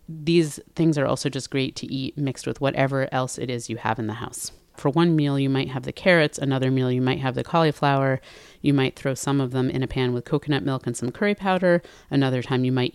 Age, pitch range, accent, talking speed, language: 30-49, 125-150 Hz, American, 250 wpm, English